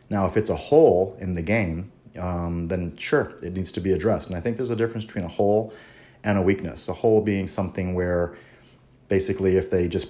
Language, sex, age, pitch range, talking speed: English, male, 30-49, 85-95 Hz, 220 wpm